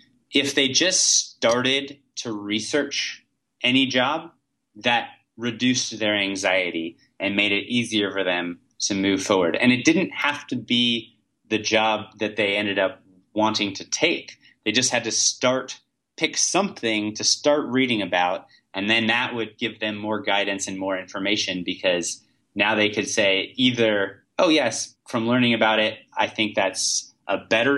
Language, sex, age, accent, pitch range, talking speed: English, male, 30-49, American, 100-130 Hz, 160 wpm